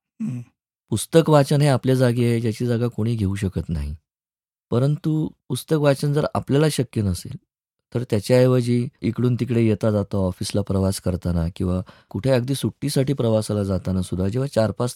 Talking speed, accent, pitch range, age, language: 115 wpm, native, 95-125 Hz, 20-39, Marathi